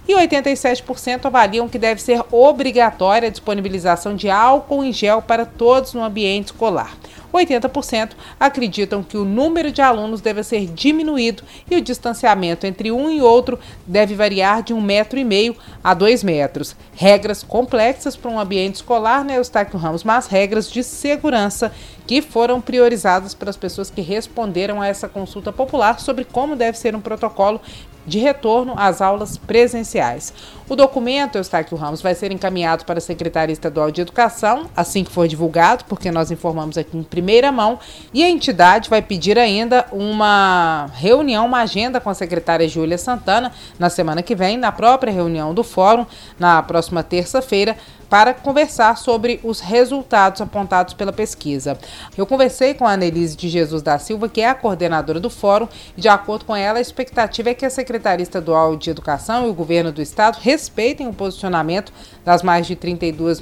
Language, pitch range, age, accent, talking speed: Portuguese, 180-240 Hz, 40-59, Brazilian, 170 wpm